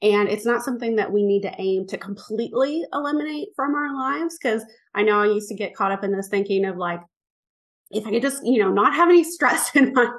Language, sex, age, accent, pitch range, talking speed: English, female, 30-49, American, 205-285 Hz, 240 wpm